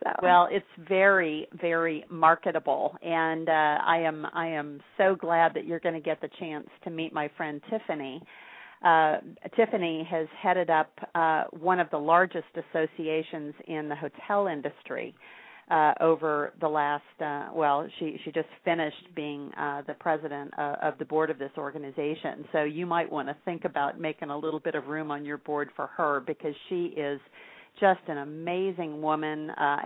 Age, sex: 40-59, female